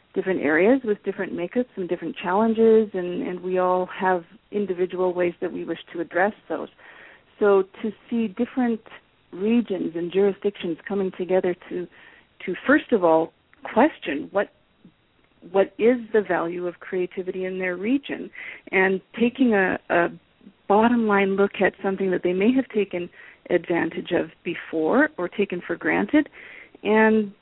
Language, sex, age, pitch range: English, female, 40-59, 180-220 Hz